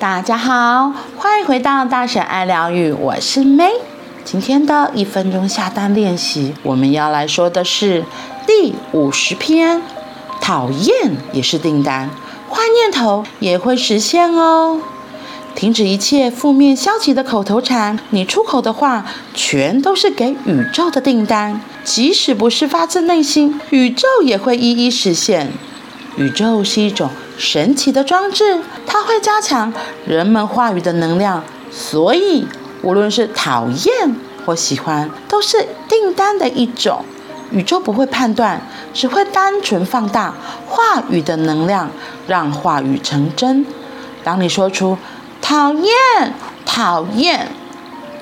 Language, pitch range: Chinese, 195-305 Hz